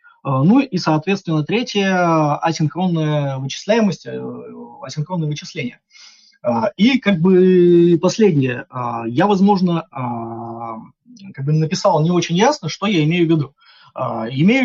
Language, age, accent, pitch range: Russian, 20-39, native, 150-195 Hz